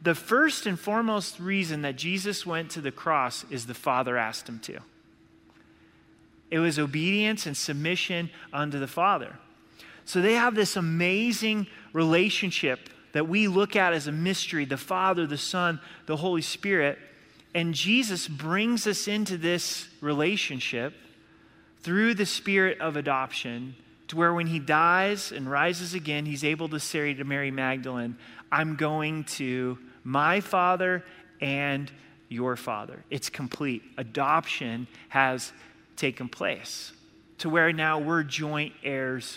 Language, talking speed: English, 140 wpm